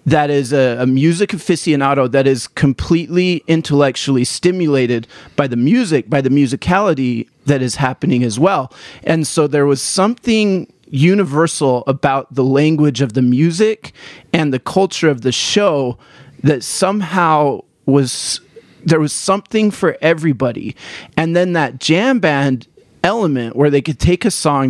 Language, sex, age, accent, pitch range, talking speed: English, male, 30-49, American, 135-165 Hz, 145 wpm